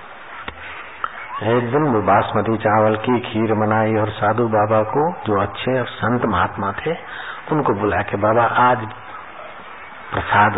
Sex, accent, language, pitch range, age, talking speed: male, native, Hindi, 110-125 Hz, 60-79, 135 wpm